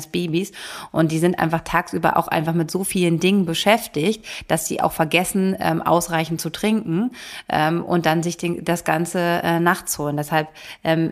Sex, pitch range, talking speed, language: female, 160-180 Hz, 180 wpm, German